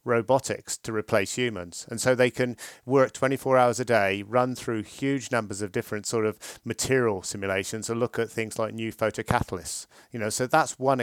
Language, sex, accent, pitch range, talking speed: English, male, British, 110-130 Hz, 190 wpm